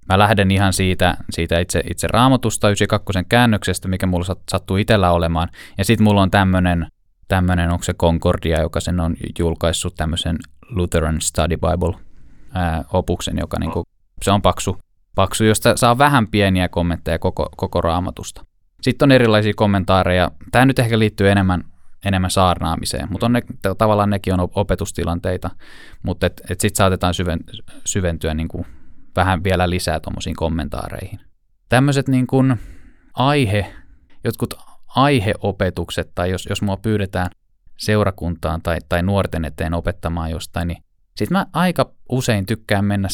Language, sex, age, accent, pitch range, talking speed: Finnish, male, 20-39, native, 85-105 Hz, 140 wpm